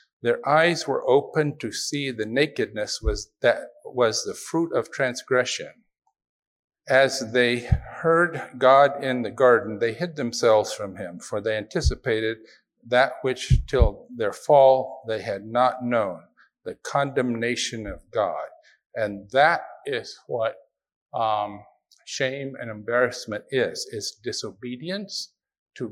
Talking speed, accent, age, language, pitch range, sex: 125 wpm, American, 50-69, English, 115-155 Hz, male